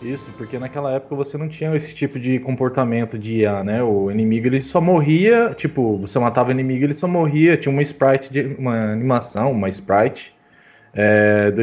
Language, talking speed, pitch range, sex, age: Portuguese, 190 wpm, 115-145 Hz, male, 20-39